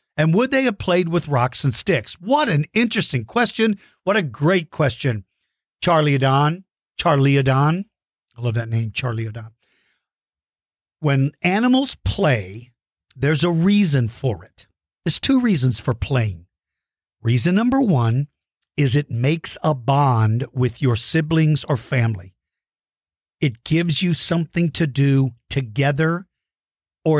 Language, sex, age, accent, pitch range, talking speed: English, male, 50-69, American, 125-165 Hz, 135 wpm